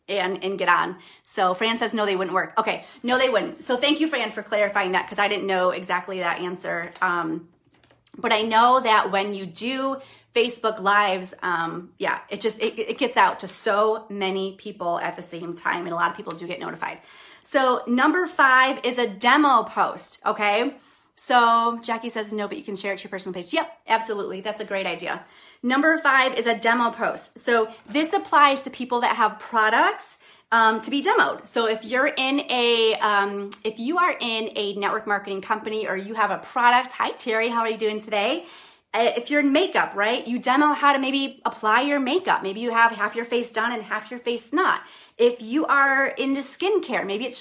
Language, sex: English, female